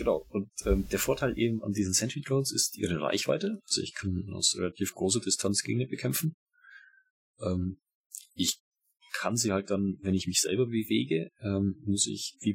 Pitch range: 90-115 Hz